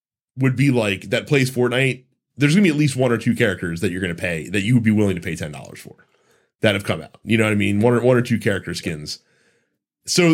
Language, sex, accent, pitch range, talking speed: English, male, American, 110-165 Hz, 265 wpm